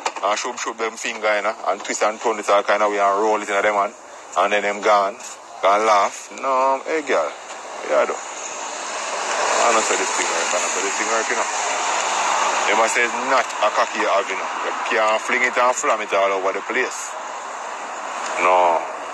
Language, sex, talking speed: English, male, 225 wpm